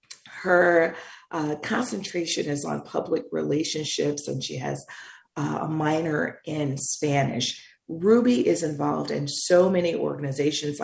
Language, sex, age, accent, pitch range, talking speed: English, female, 40-59, American, 145-195 Hz, 120 wpm